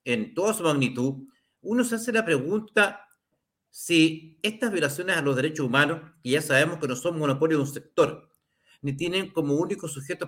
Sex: male